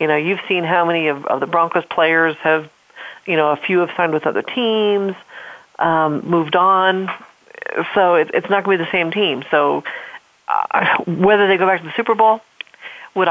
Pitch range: 165-205 Hz